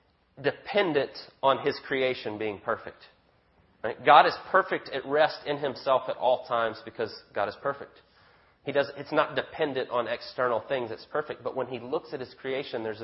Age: 30-49